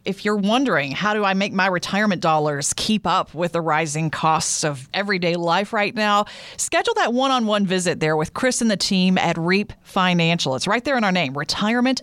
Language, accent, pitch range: English, American, 165-210 Hz